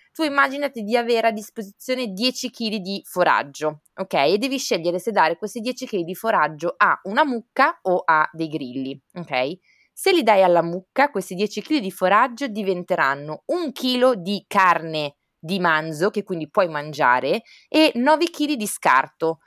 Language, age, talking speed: Italian, 20-39, 170 wpm